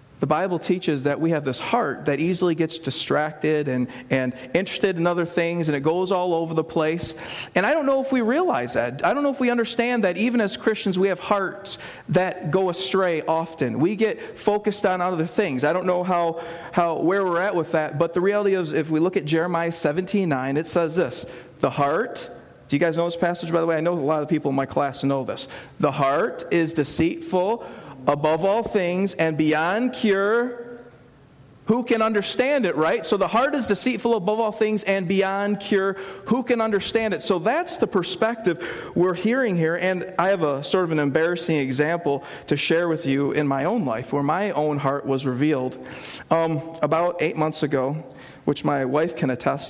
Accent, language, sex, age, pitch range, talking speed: American, English, male, 40-59, 150-195 Hz, 210 wpm